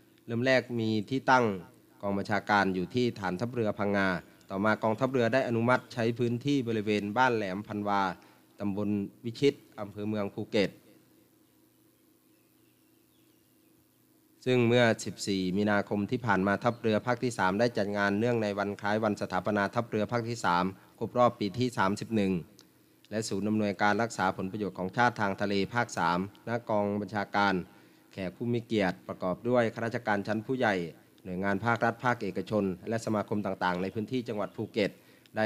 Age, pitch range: 30-49, 100-120 Hz